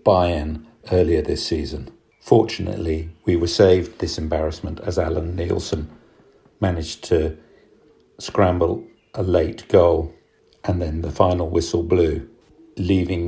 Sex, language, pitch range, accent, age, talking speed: male, English, 80-95 Hz, British, 50-69, 115 wpm